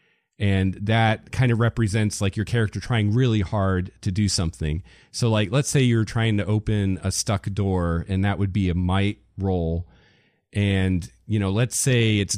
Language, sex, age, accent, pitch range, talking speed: English, male, 40-59, American, 100-120 Hz, 185 wpm